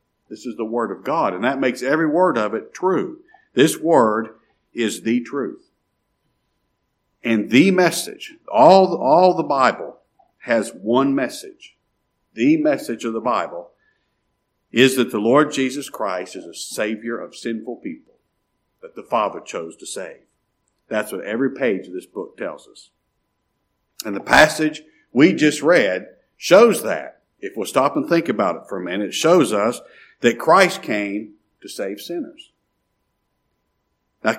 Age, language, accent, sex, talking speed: 50-69, English, American, male, 155 wpm